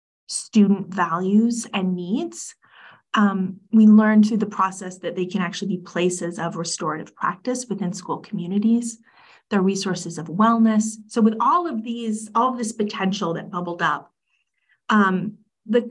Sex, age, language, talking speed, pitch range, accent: female, 30-49, English, 150 wpm, 185-230 Hz, American